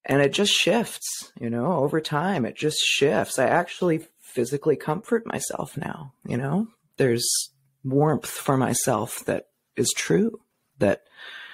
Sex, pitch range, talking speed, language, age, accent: female, 135-175 Hz, 140 wpm, English, 30-49, American